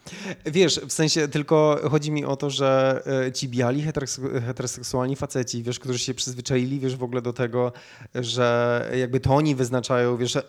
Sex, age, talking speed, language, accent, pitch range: male, 20-39, 160 wpm, Polish, native, 120-135 Hz